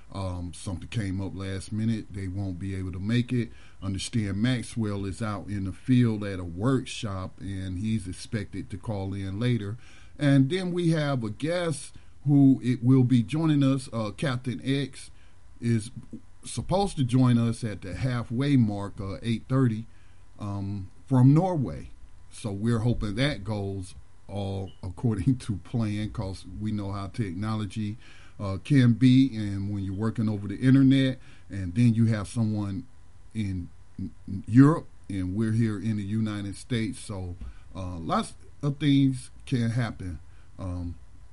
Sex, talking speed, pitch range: male, 155 wpm, 95-125 Hz